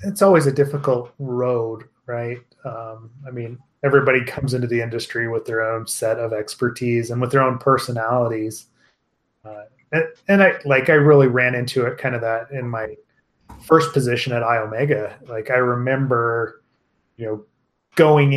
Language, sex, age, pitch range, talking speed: English, male, 30-49, 120-145 Hz, 165 wpm